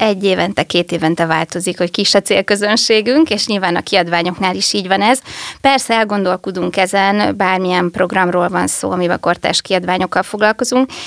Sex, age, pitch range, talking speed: female, 20-39, 185-220 Hz, 150 wpm